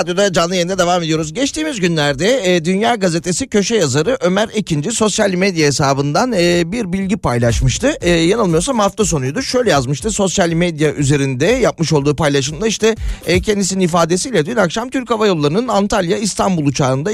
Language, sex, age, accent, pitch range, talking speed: Turkish, male, 40-59, native, 140-195 Hz, 160 wpm